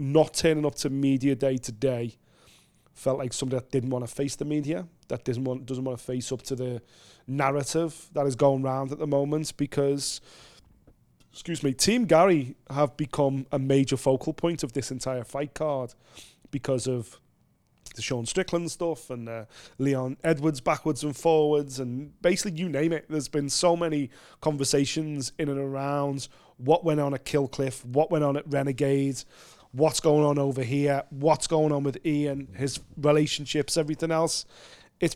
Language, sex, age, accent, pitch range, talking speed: English, male, 30-49, British, 135-155 Hz, 175 wpm